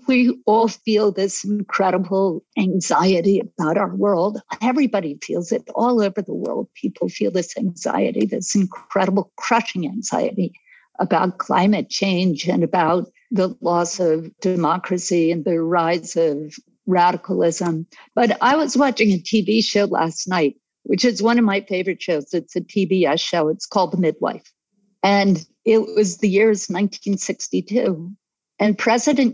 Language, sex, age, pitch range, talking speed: Italian, female, 50-69, 185-235 Hz, 145 wpm